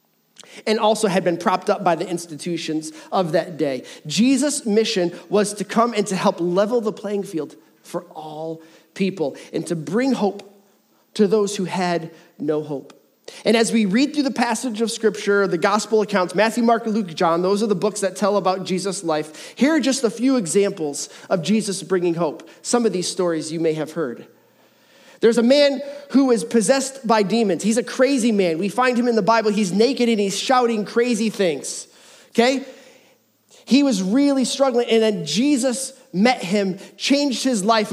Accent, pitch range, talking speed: American, 185-245 Hz, 185 wpm